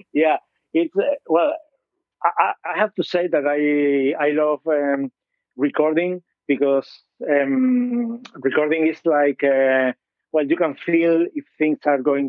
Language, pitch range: English, 140-160 Hz